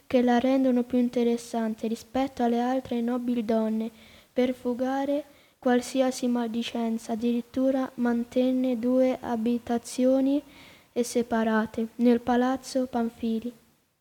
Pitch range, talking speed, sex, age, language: 235-255 Hz, 95 wpm, female, 20-39, Italian